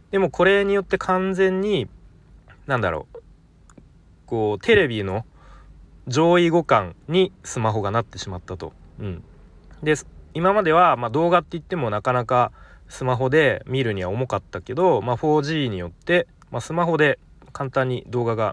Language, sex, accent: Japanese, male, native